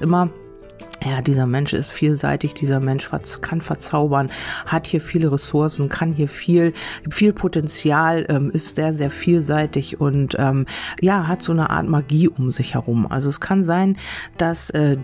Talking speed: 165 wpm